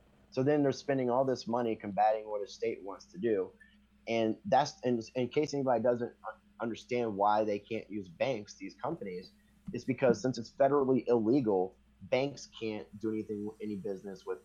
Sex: male